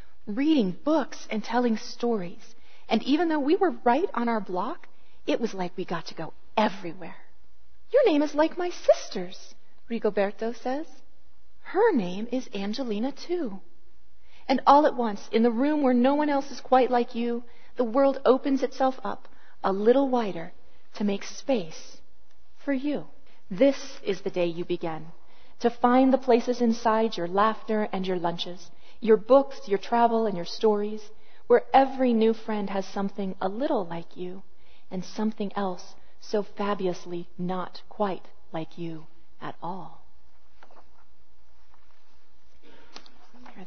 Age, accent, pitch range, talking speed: 30-49, American, 175-250 Hz, 150 wpm